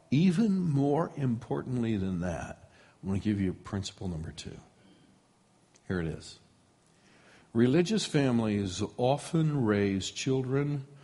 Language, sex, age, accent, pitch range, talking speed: English, male, 60-79, American, 110-175 Hz, 115 wpm